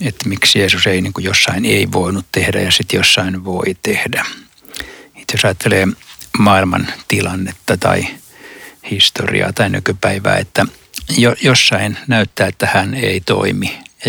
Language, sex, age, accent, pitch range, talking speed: Finnish, male, 60-79, native, 95-105 Hz, 135 wpm